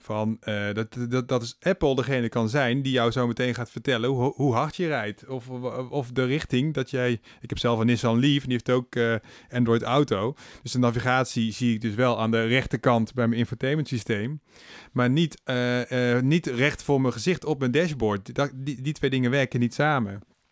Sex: male